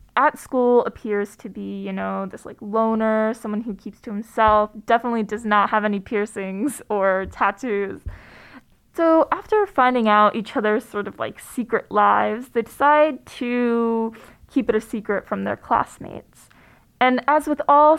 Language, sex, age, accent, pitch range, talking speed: English, female, 20-39, American, 210-250 Hz, 160 wpm